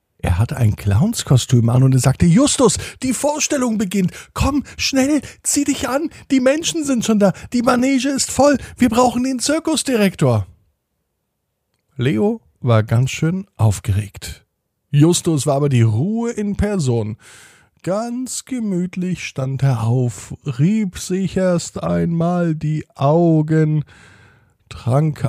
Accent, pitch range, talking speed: German, 105-170 Hz, 130 wpm